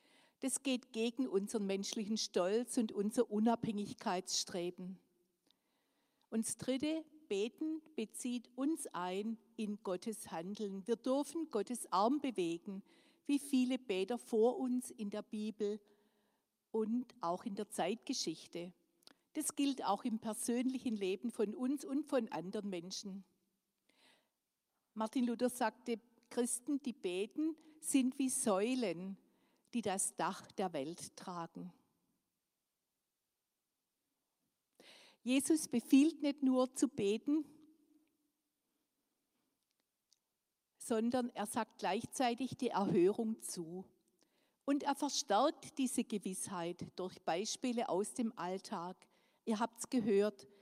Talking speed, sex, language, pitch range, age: 105 wpm, female, German, 195-270 Hz, 50-69